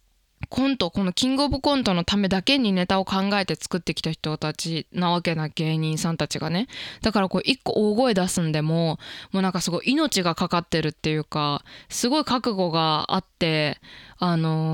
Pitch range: 165-225 Hz